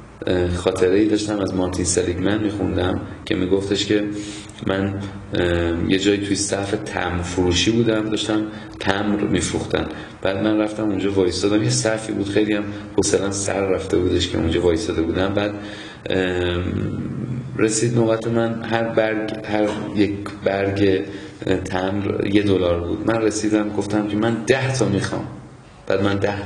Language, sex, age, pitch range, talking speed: Persian, male, 30-49, 95-105 Hz, 145 wpm